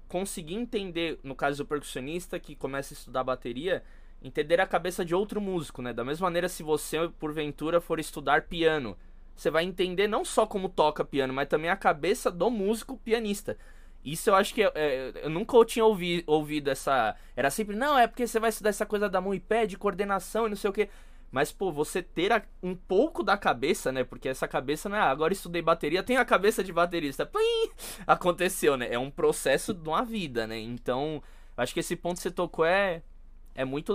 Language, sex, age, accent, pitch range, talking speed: Portuguese, male, 20-39, Brazilian, 150-205 Hz, 210 wpm